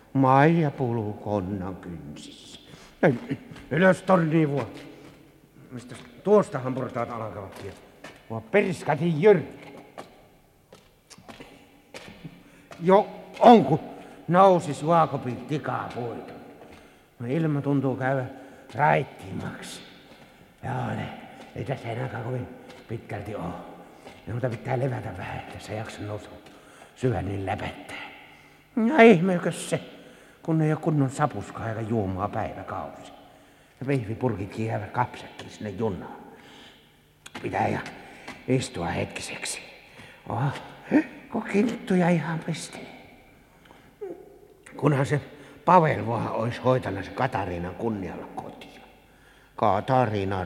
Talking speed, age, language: 90 wpm, 60-79, Finnish